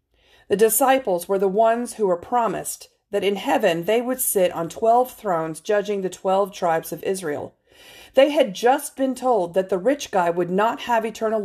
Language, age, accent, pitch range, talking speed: English, 40-59, American, 170-245 Hz, 190 wpm